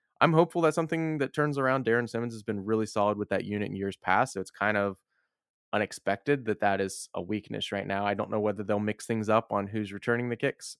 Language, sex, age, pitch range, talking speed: English, male, 20-39, 100-120 Hz, 245 wpm